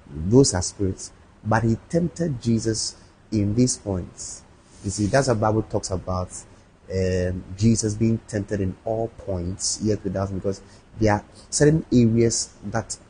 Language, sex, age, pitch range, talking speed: English, male, 30-49, 95-110 Hz, 145 wpm